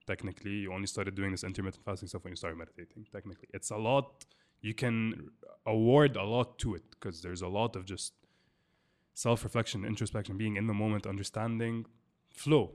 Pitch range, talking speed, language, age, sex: 95-110 Hz, 180 wpm, Arabic, 20-39, male